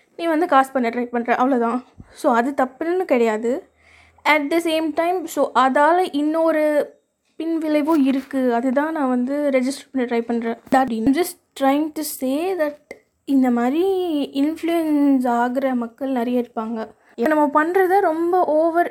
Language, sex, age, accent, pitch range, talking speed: Tamil, female, 20-39, native, 245-300 Hz, 150 wpm